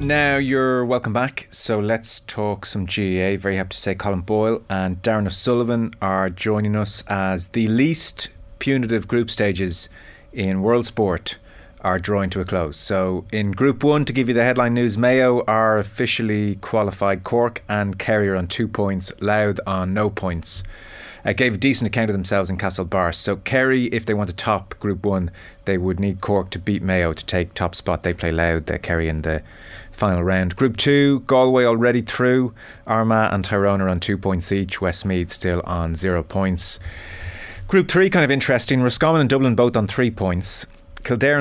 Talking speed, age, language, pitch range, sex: 185 wpm, 30-49, English, 90-115 Hz, male